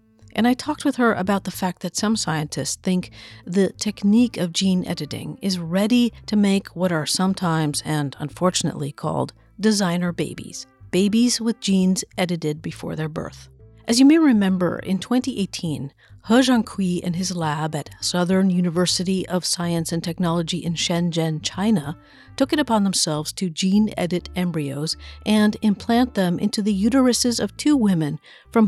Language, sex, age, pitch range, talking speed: English, female, 50-69, 160-215 Hz, 155 wpm